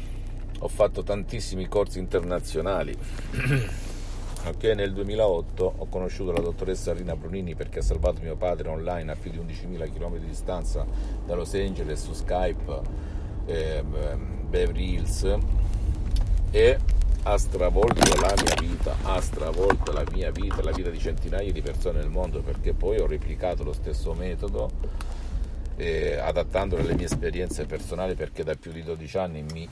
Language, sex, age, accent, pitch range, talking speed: Italian, male, 50-69, native, 80-90 Hz, 145 wpm